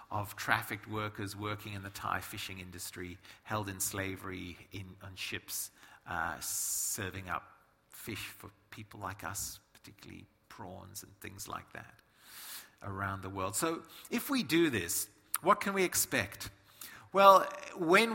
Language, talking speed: English, 140 wpm